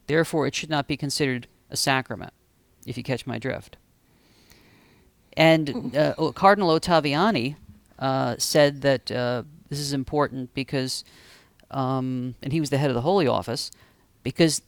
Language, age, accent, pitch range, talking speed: English, 40-59, American, 130-160 Hz, 145 wpm